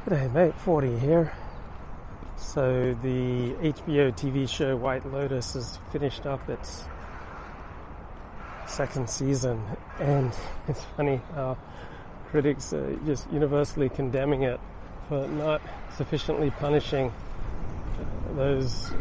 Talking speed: 100 wpm